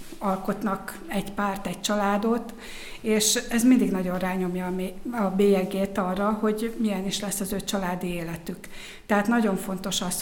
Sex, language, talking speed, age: female, Hungarian, 145 wpm, 60-79